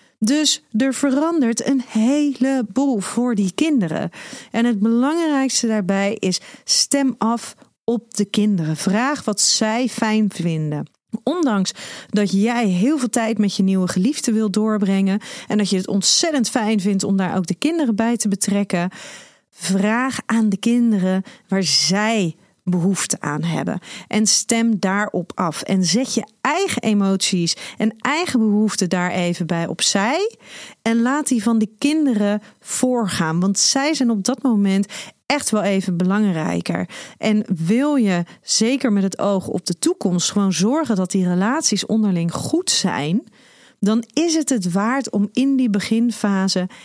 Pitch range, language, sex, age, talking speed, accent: 190-250 Hz, Dutch, female, 40-59, 155 wpm, Dutch